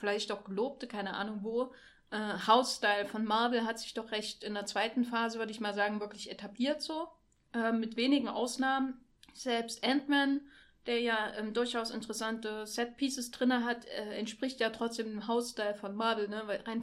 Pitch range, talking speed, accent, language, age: 215-250 Hz, 180 wpm, German, German, 20-39